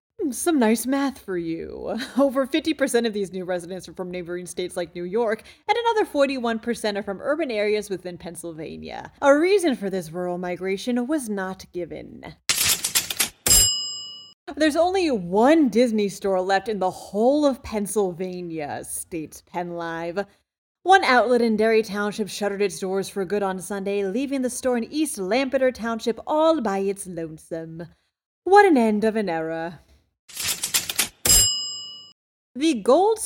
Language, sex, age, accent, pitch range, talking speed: English, female, 30-49, American, 185-275 Hz, 145 wpm